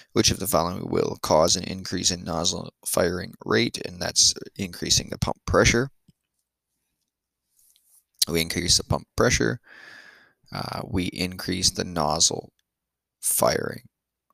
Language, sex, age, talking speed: English, male, 20-39, 120 wpm